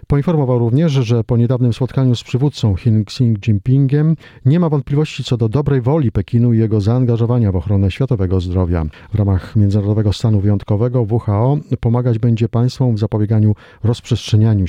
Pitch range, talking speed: 105-130 Hz, 150 wpm